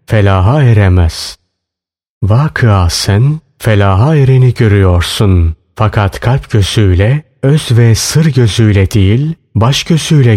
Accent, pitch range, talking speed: native, 95-130 Hz, 100 wpm